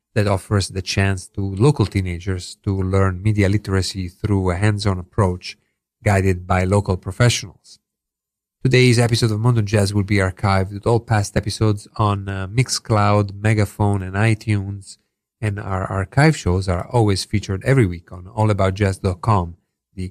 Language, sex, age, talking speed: English, male, 40-59, 145 wpm